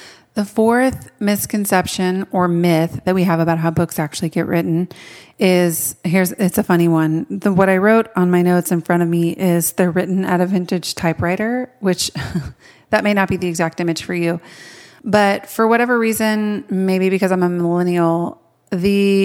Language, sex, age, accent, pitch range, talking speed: English, female, 30-49, American, 175-200 Hz, 180 wpm